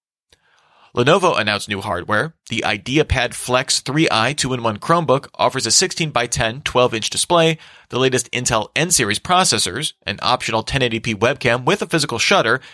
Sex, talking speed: male, 130 wpm